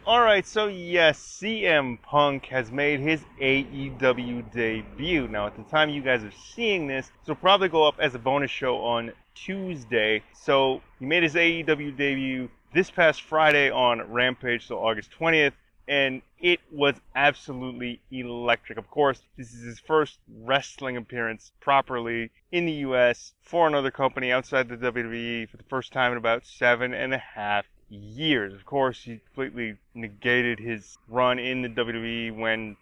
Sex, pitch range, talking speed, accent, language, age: male, 115-140 Hz, 165 wpm, American, English, 20-39